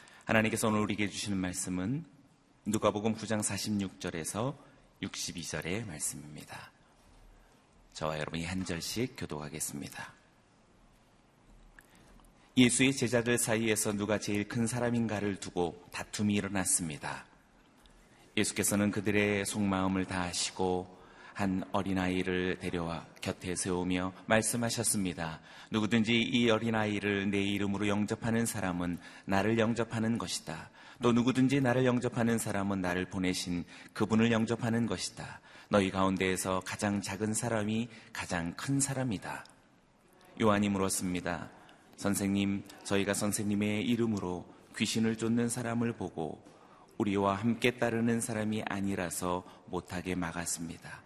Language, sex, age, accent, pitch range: Korean, male, 30-49, native, 90-115 Hz